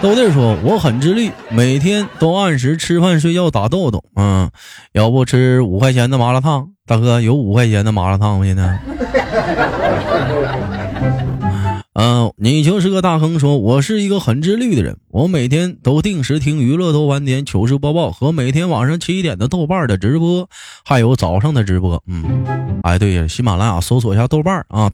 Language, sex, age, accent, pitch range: Chinese, male, 20-39, native, 115-170 Hz